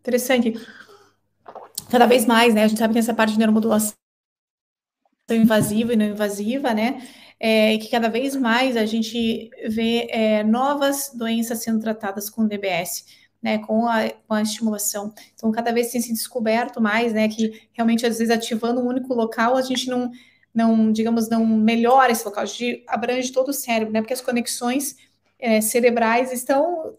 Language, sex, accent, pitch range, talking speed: Portuguese, female, Brazilian, 225-260 Hz, 180 wpm